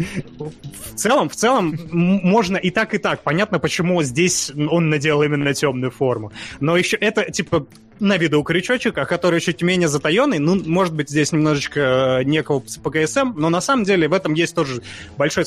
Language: Russian